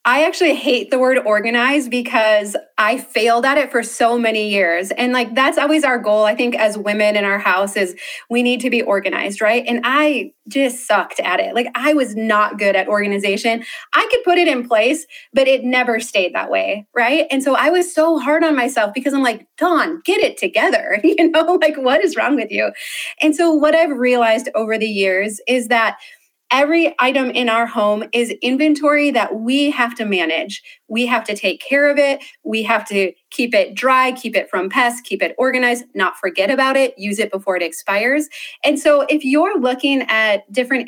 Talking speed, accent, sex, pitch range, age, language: 210 wpm, American, female, 220-295 Hz, 20-39, English